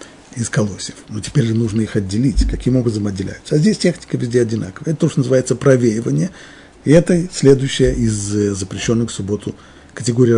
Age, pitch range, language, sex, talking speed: 50-69, 105-140 Hz, Russian, male, 170 wpm